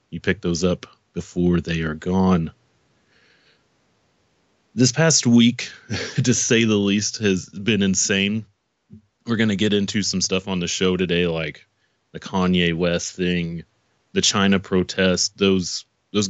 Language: English